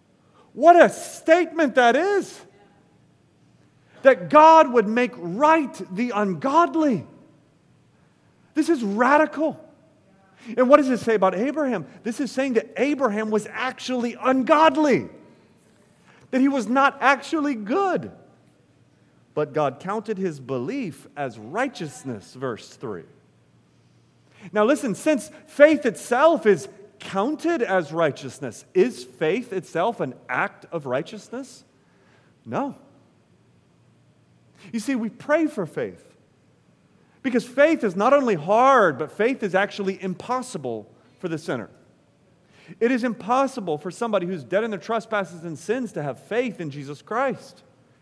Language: English